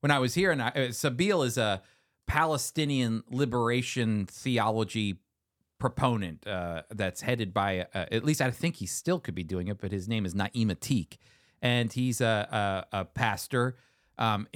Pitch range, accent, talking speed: 110-155 Hz, American, 170 wpm